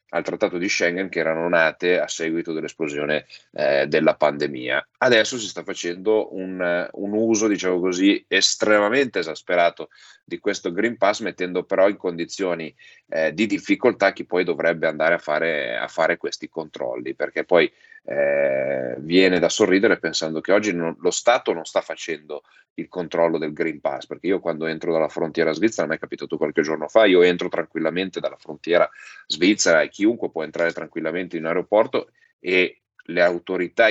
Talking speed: 160 wpm